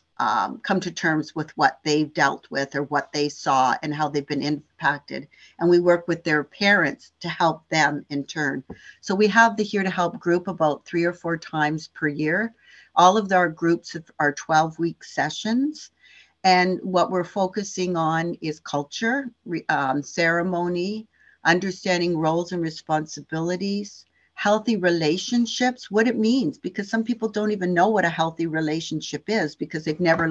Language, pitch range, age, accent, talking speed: English, 160-200 Hz, 50-69, American, 165 wpm